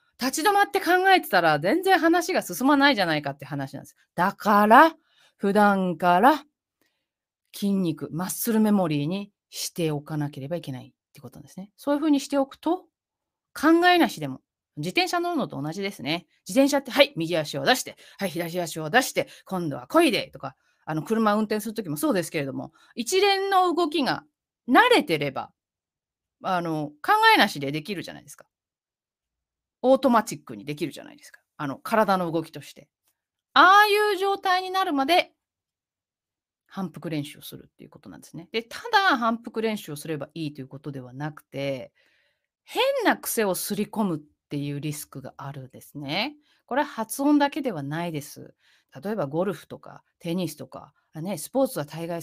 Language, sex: Japanese, female